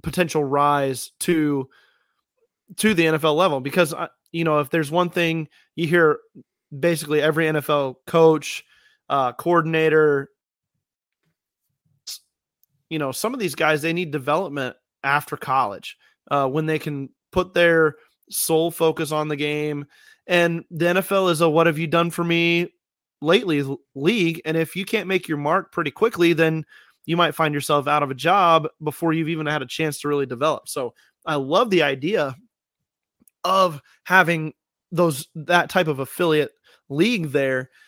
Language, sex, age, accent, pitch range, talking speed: English, male, 30-49, American, 150-170 Hz, 155 wpm